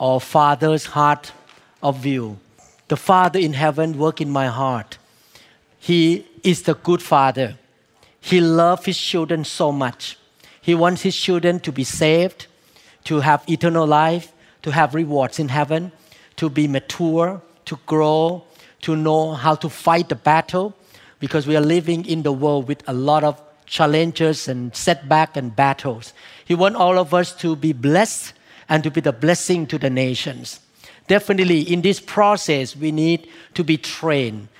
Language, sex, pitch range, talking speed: English, male, 145-175 Hz, 160 wpm